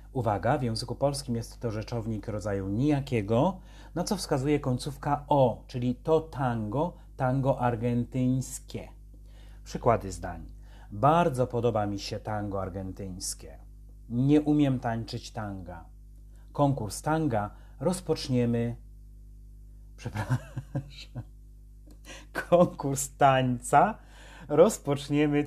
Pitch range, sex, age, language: 115-135 Hz, male, 30-49, Polish